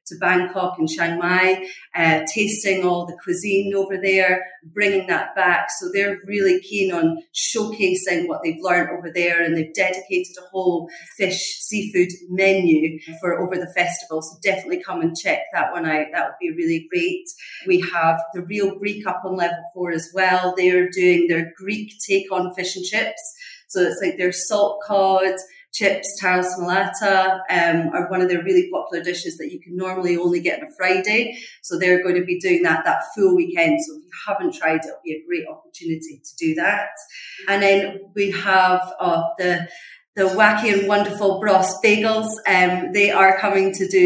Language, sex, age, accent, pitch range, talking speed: English, female, 40-59, British, 180-210 Hz, 190 wpm